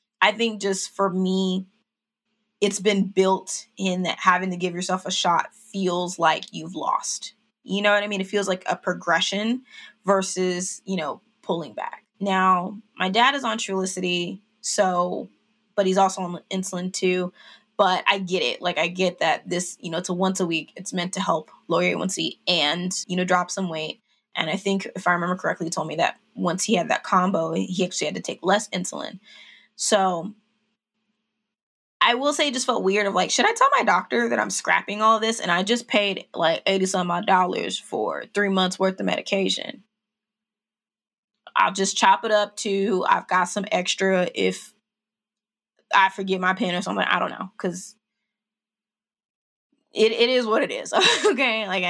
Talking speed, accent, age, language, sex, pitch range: 190 wpm, American, 20-39, English, female, 185-220 Hz